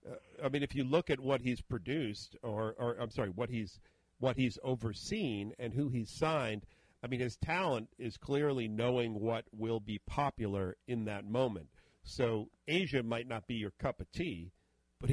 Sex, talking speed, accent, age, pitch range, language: male, 185 wpm, American, 50-69, 110-135 Hz, English